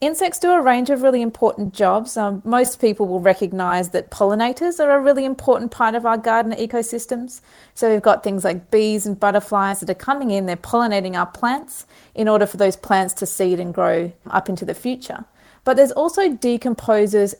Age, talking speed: 30-49, 195 wpm